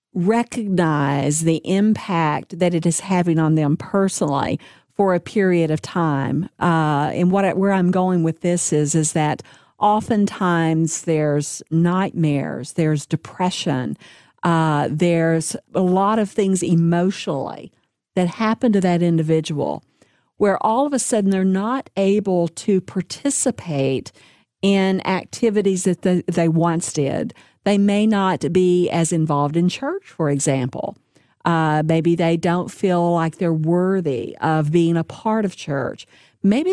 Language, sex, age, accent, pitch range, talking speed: English, female, 50-69, American, 155-200 Hz, 140 wpm